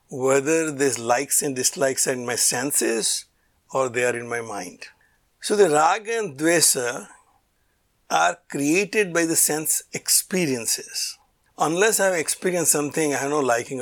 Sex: male